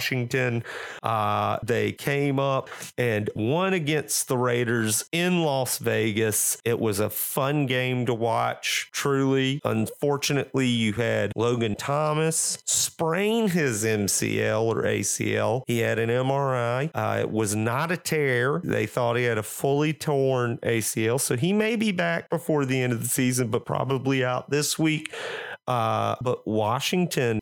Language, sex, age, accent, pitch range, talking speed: English, male, 30-49, American, 110-140 Hz, 150 wpm